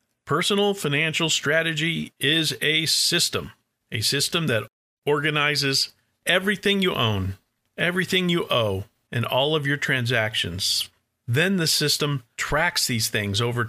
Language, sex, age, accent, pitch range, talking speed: English, male, 50-69, American, 110-145 Hz, 125 wpm